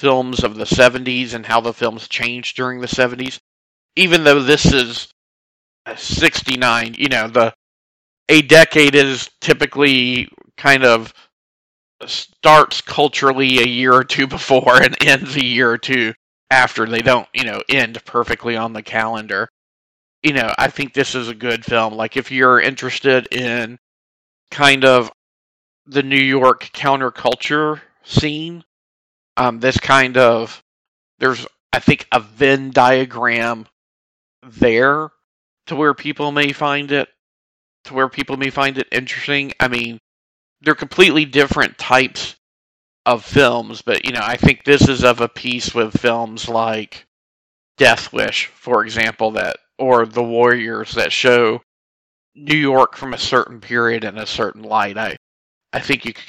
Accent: American